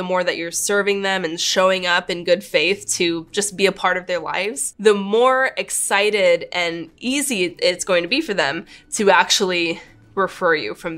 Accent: American